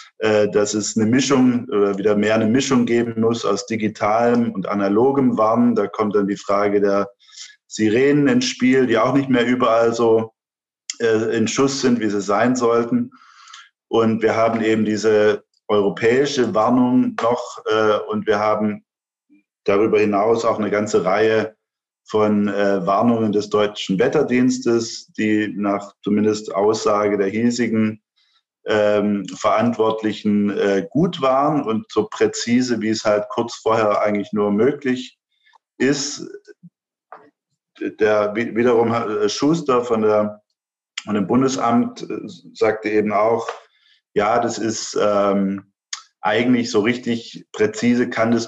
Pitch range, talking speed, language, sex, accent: 105-120 Hz, 130 wpm, German, male, German